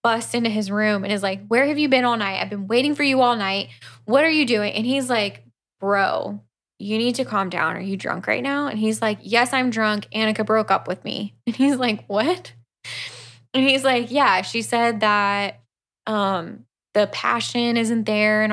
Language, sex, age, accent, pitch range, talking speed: English, female, 10-29, American, 190-230 Hz, 215 wpm